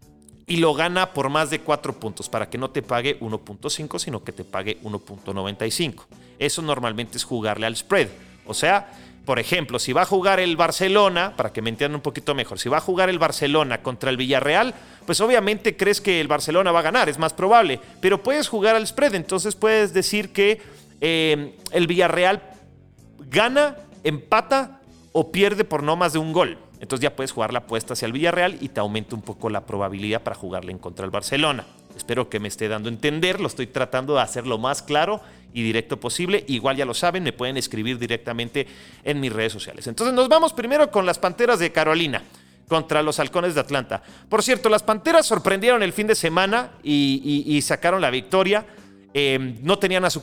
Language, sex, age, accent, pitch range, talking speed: Spanish, male, 40-59, Mexican, 115-185 Hz, 205 wpm